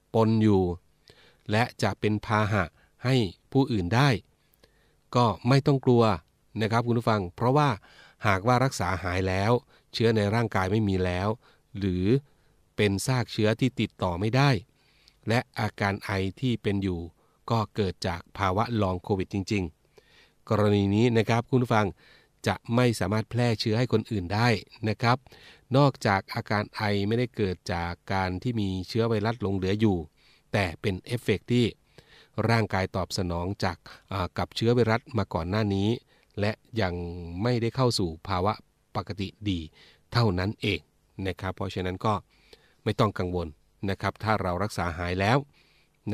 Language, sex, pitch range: Thai, male, 95-115 Hz